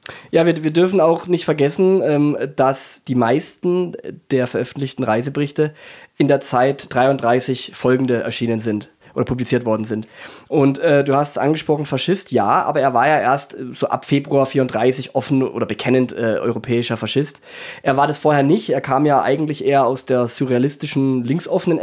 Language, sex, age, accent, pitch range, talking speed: German, male, 20-39, German, 125-155 Hz, 170 wpm